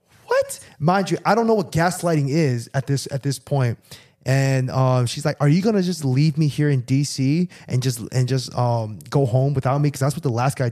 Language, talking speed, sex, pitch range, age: English, 235 wpm, male, 130-180 Hz, 20-39